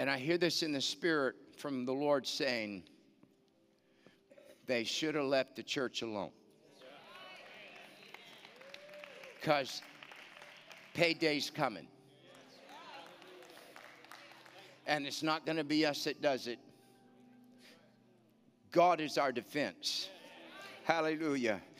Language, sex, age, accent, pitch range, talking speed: English, male, 60-79, American, 140-195 Hz, 100 wpm